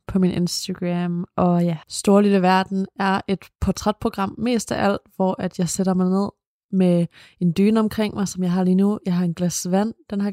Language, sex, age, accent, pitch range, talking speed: Danish, female, 20-39, native, 180-205 Hz, 210 wpm